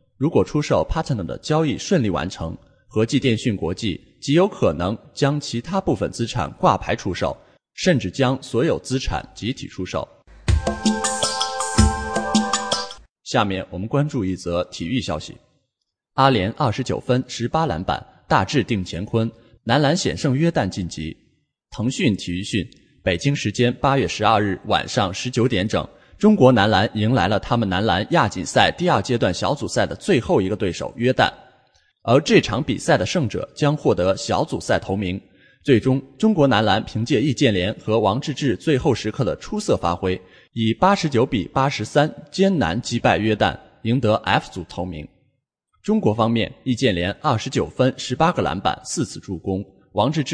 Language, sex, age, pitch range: English, male, 20-39, 100-140 Hz